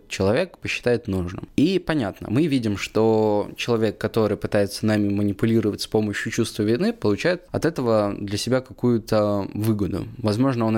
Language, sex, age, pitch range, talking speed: Russian, male, 20-39, 100-120 Hz, 145 wpm